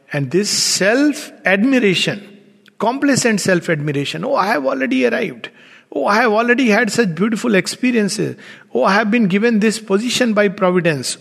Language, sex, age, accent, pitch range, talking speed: English, male, 50-69, Indian, 155-210 Hz, 145 wpm